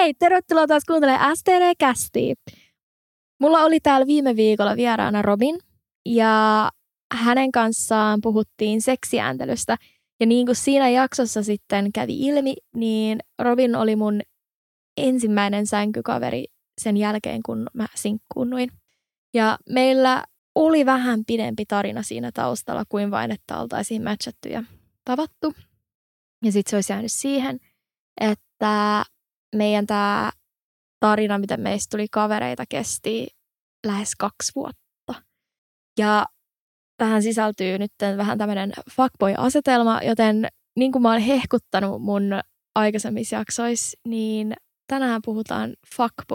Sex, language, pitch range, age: female, Finnish, 210-250 Hz, 20-39